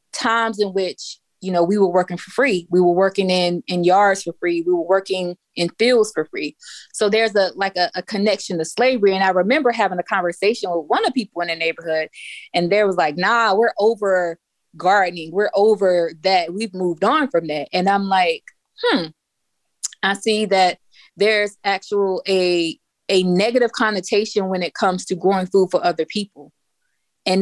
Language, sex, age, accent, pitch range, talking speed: English, female, 20-39, American, 180-215 Hz, 190 wpm